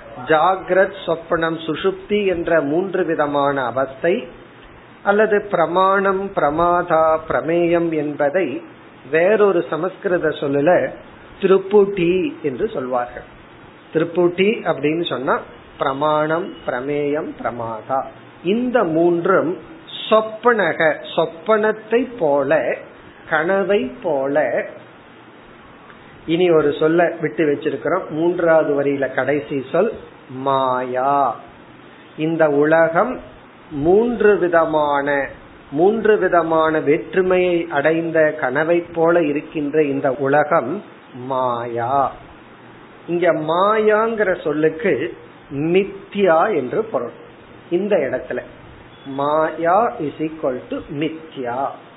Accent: native